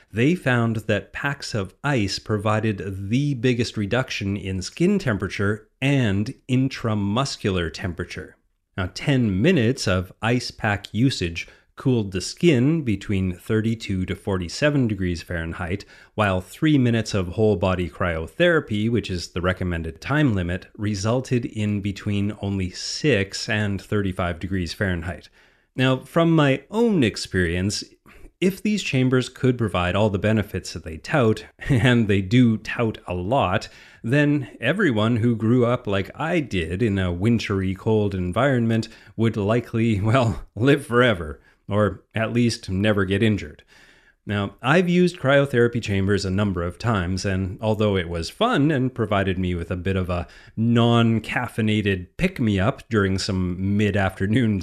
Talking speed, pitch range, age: 140 wpm, 95-125 Hz, 30-49